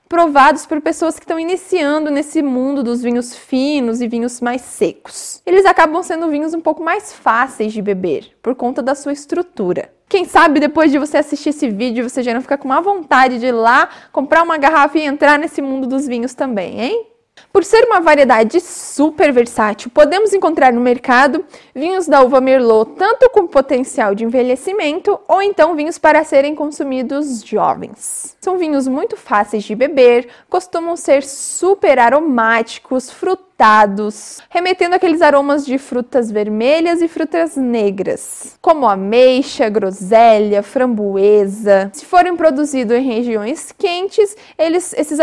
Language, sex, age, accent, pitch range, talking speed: Portuguese, female, 20-39, Brazilian, 245-330 Hz, 155 wpm